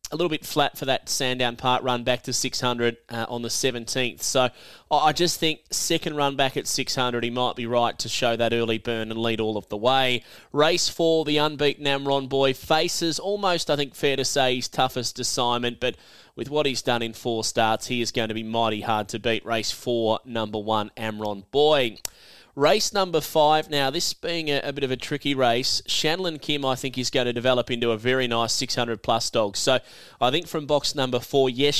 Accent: Australian